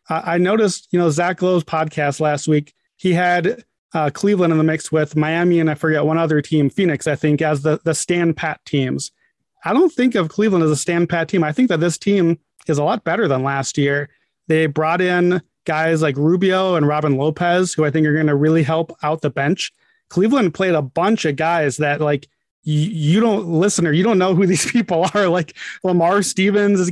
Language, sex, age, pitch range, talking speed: English, male, 30-49, 155-185 Hz, 220 wpm